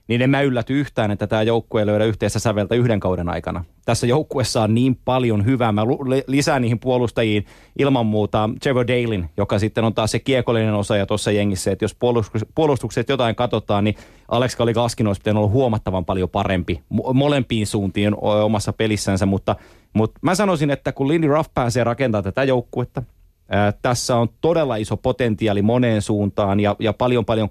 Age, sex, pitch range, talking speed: 30-49, male, 105-125 Hz, 180 wpm